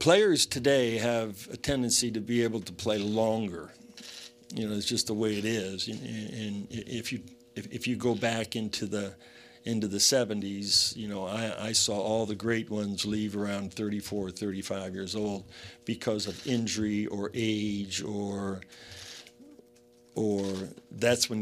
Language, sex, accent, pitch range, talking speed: English, male, American, 100-120 Hz, 155 wpm